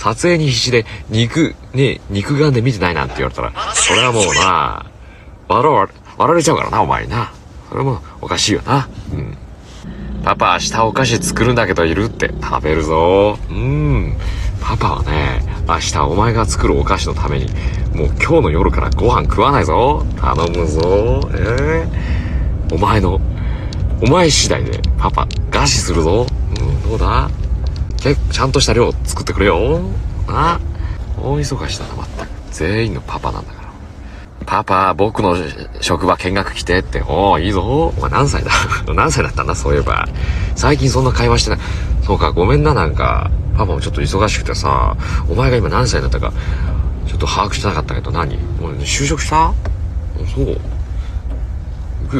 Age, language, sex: 40-59, Japanese, male